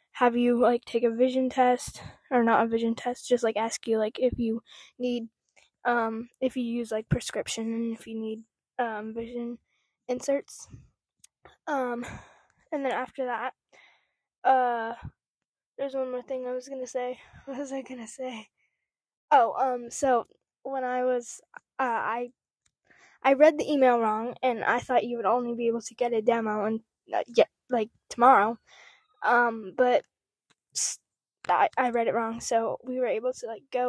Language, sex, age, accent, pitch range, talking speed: English, female, 10-29, American, 235-270 Hz, 170 wpm